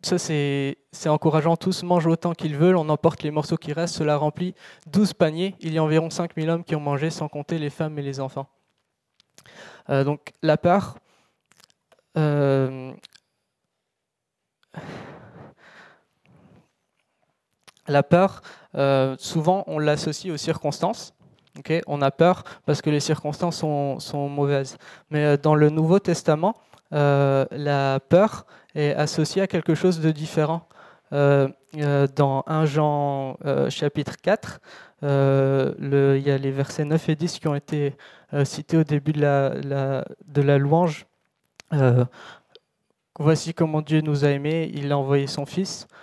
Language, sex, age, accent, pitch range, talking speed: French, male, 20-39, French, 145-165 Hz, 155 wpm